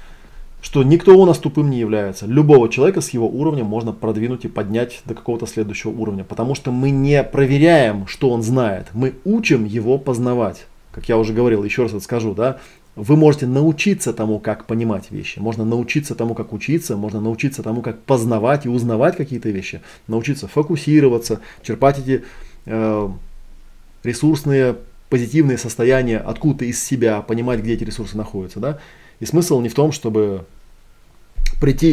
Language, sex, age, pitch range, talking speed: Russian, male, 20-39, 110-135 Hz, 165 wpm